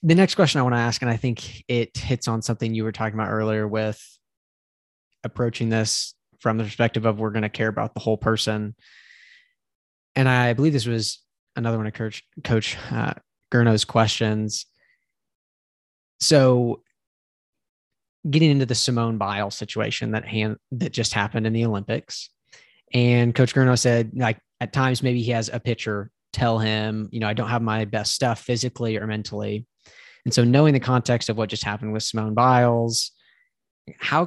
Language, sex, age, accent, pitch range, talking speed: English, male, 20-39, American, 110-130 Hz, 175 wpm